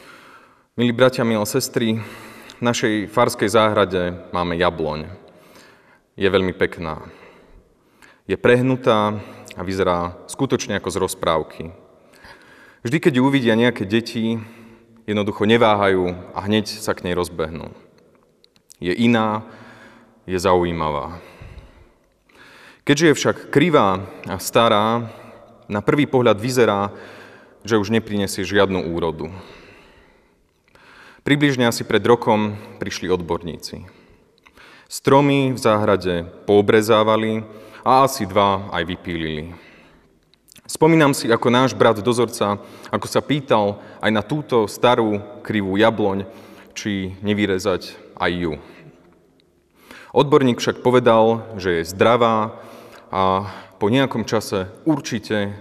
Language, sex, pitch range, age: Slovak, male, 95-115 Hz, 30-49